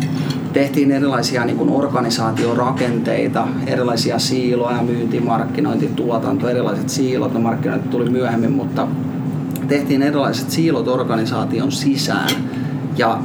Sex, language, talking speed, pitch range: male, Finnish, 100 wpm, 125-145 Hz